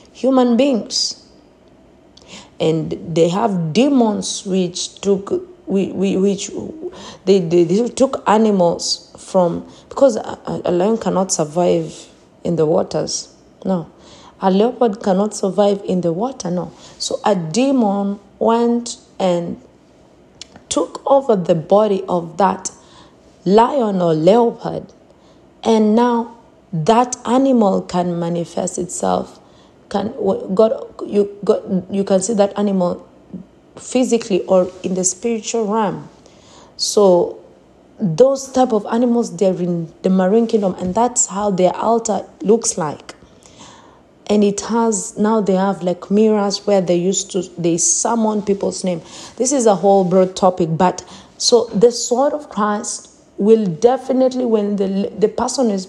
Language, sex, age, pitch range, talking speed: English, female, 40-59, 185-230 Hz, 135 wpm